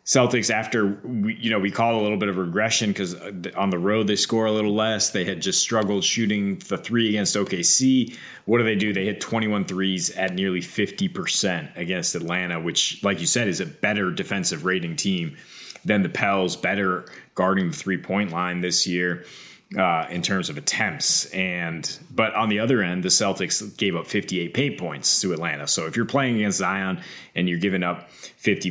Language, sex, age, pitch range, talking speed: English, male, 30-49, 90-115 Hz, 200 wpm